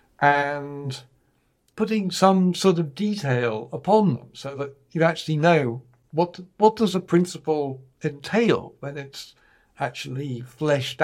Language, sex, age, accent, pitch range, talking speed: English, male, 60-79, British, 120-155 Hz, 125 wpm